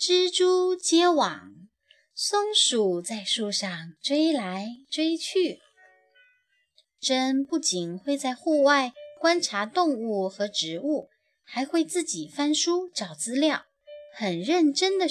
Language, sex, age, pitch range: Chinese, female, 20-39, 205-310 Hz